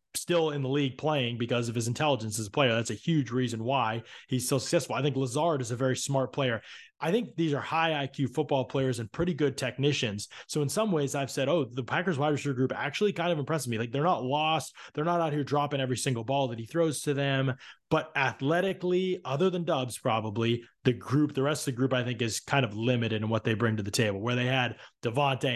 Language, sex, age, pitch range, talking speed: English, male, 20-39, 120-145 Hz, 245 wpm